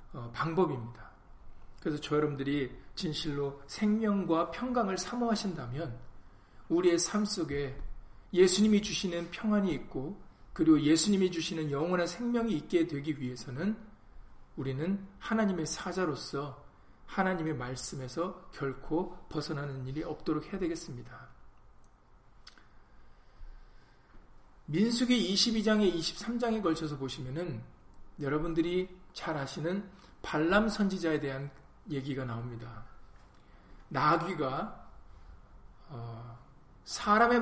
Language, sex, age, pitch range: Korean, male, 40-59, 125-185 Hz